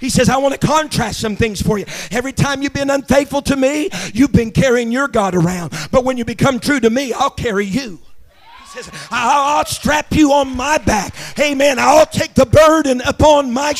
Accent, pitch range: American, 235-280 Hz